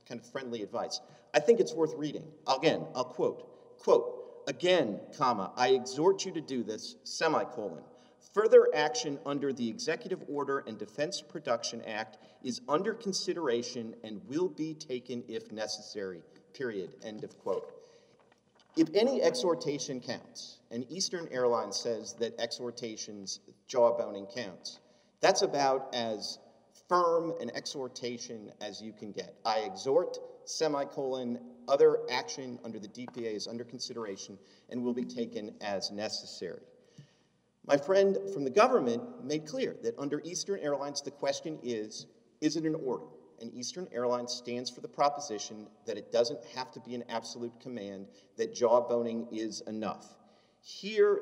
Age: 40-59